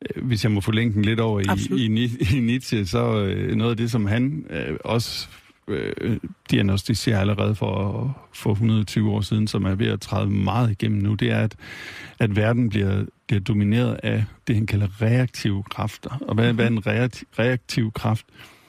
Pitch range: 105-120 Hz